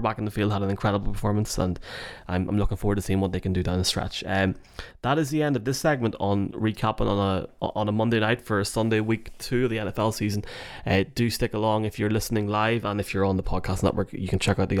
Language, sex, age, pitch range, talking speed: English, male, 20-39, 100-120 Hz, 275 wpm